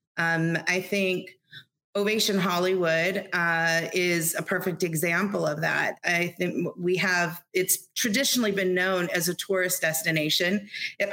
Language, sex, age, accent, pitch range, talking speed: English, female, 30-49, American, 170-195 Hz, 135 wpm